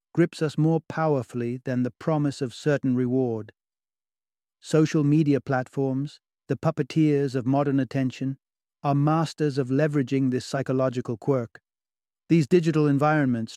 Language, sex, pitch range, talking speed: English, male, 125-155 Hz, 125 wpm